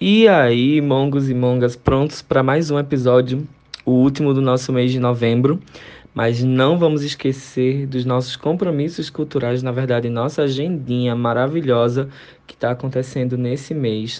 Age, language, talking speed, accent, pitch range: 20-39, Portuguese, 150 wpm, Brazilian, 125-140 Hz